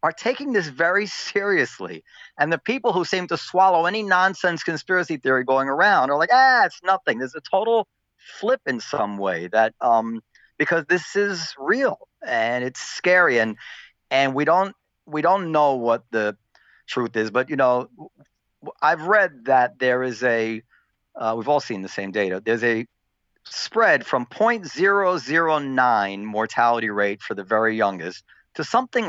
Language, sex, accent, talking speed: English, male, American, 165 wpm